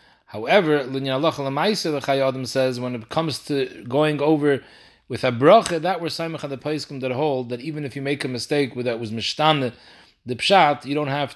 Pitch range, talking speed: 130-160 Hz, 195 wpm